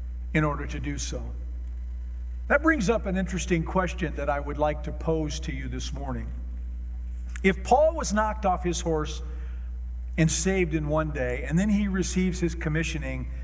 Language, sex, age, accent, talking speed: English, male, 50-69, American, 175 wpm